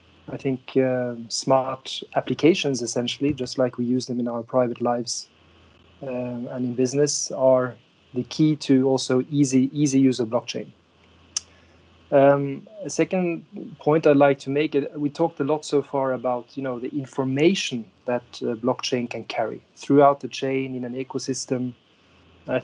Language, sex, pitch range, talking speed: English, male, 120-140 Hz, 160 wpm